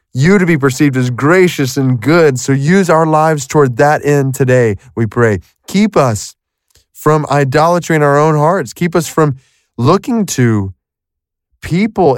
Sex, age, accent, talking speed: male, 20-39, American, 160 wpm